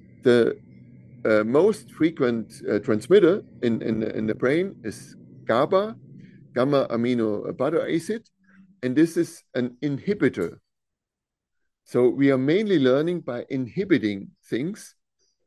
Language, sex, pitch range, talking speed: English, male, 120-155 Hz, 115 wpm